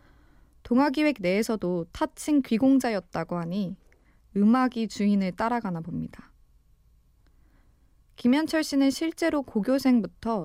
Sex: female